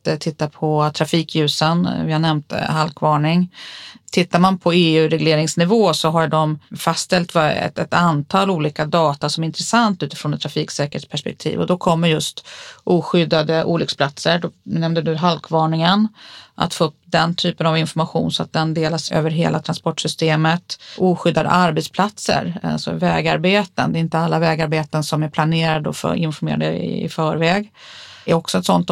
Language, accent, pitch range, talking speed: Swedish, native, 155-185 Hz, 150 wpm